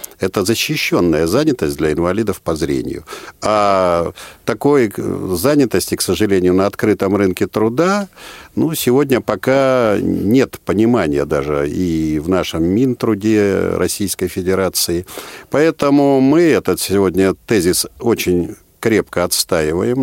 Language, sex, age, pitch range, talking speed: Russian, male, 50-69, 95-130 Hz, 110 wpm